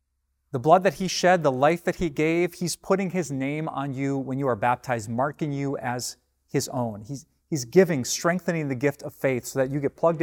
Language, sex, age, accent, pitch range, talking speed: English, male, 30-49, American, 110-165 Hz, 225 wpm